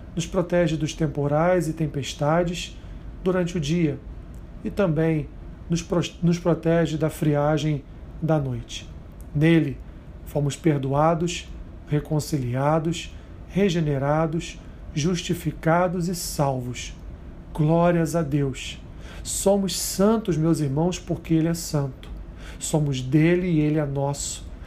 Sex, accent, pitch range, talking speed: male, Brazilian, 120-170 Hz, 100 wpm